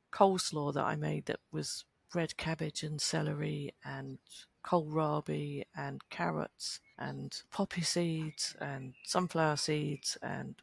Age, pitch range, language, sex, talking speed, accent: 40-59, 140-180 Hz, English, female, 120 wpm, British